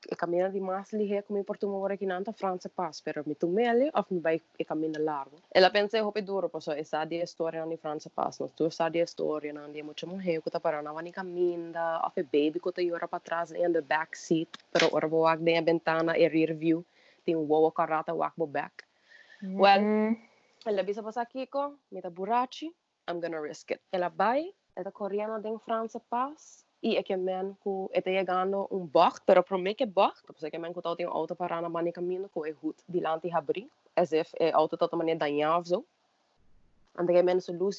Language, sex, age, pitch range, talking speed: English, female, 20-39, 165-200 Hz, 45 wpm